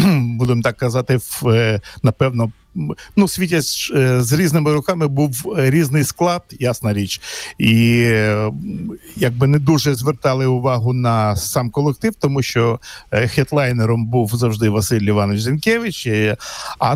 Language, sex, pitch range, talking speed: Ukrainian, male, 115-150 Hz, 130 wpm